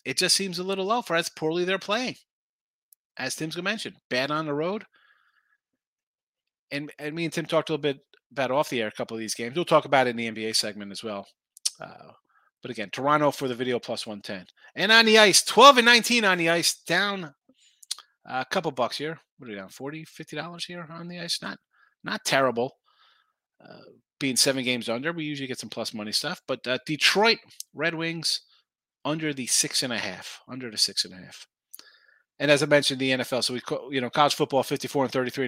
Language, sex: English, male